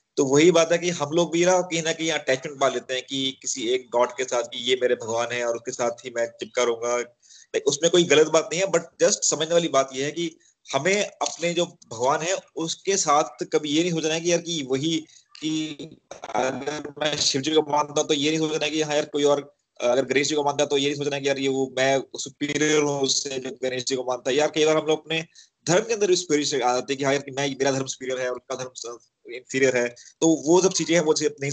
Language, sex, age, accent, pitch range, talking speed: Hindi, male, 20-39, native, 130-160 Hz, 215 wpm